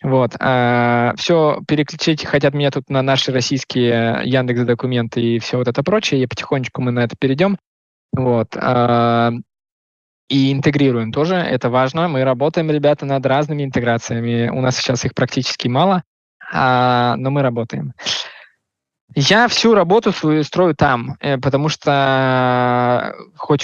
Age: 20-39